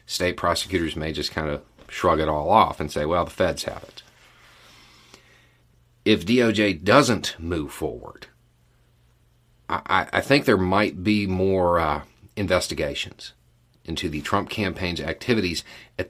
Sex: male